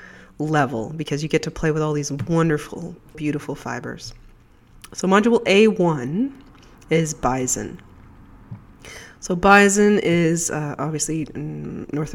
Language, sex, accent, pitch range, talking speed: English, female, American, 140-170 Hz, 125 wpm